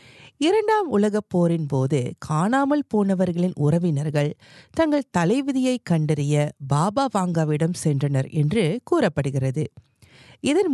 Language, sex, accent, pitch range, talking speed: Tamil, female, native, 145-225 Hz, 95 wpm